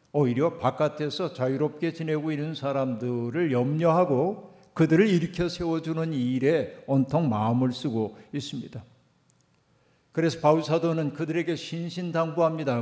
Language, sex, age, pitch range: Korean, male, 50-69, 140-180 Hz